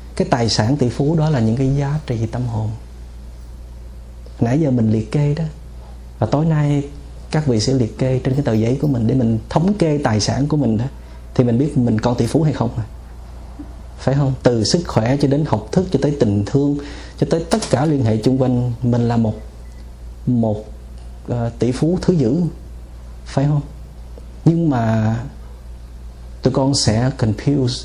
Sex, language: male, Vietnamese